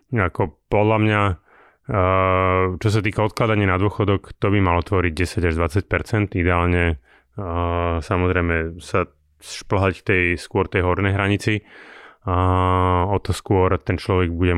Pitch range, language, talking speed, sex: 90-105 Hz, Slovak, 125 wpm, male